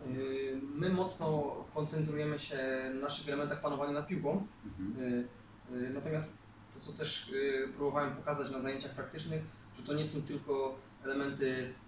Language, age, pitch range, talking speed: Polish, 20-39, 135-165 Hz, 125 wpm